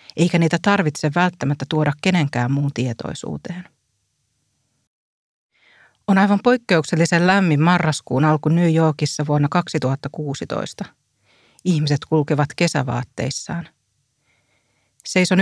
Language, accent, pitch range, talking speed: Finnish, native, 140-165 Hz, 85 wpm